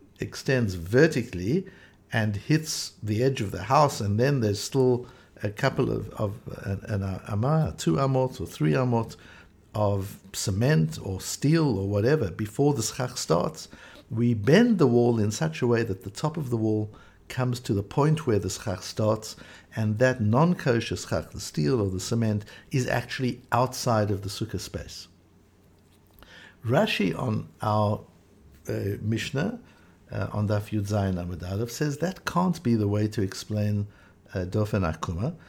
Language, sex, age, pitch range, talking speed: English, male, 60-79, 100-125 Hz, 150 wpm